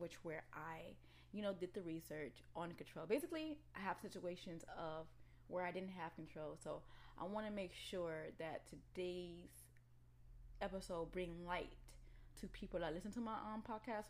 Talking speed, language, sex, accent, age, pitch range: 165 wpm, English, female, American, 10-29, 135-190 Hz